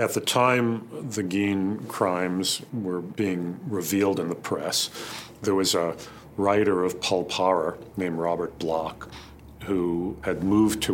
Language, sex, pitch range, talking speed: English, male, 75-95 Hz, 145 wpm